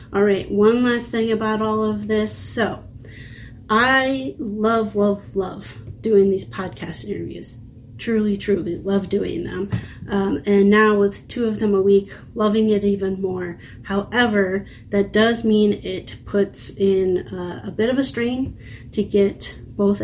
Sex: female